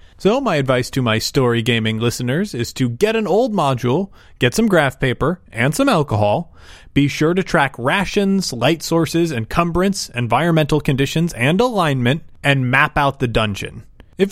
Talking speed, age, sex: 165 wpm, 30-49, male